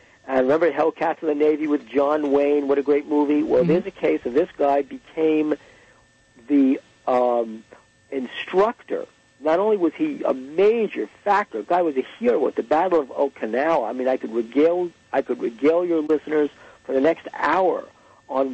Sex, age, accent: male, 60-79, American